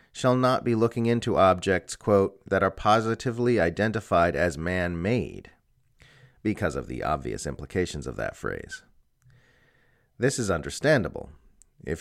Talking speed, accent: 125 wpm, American